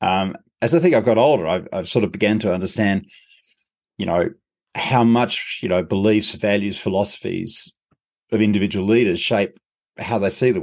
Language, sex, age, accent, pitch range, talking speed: English, male, 30-49, Australian, 100-125 Hz, 175 wpm